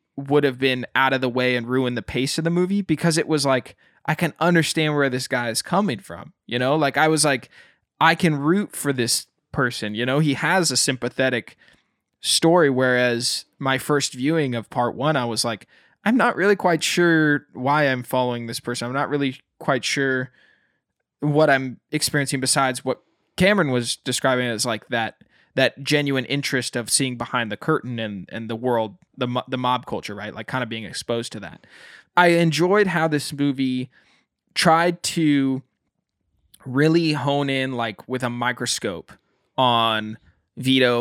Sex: male